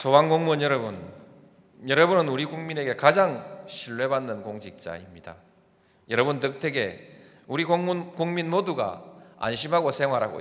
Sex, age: male, 40-59